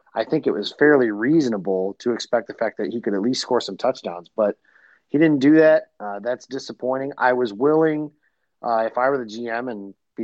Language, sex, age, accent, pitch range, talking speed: English, male, 30-49, American, 110-135 Hz, 215 wpm